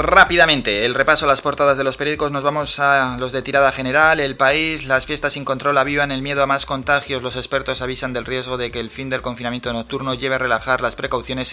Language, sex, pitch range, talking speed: Spanish, male, 120-140 Hz, 235 wpm